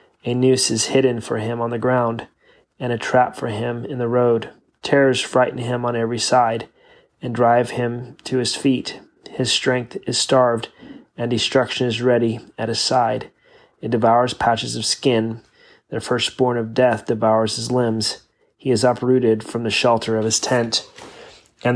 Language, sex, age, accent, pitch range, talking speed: English, male, 30-49, American, 115-125 Hz, 170 wpm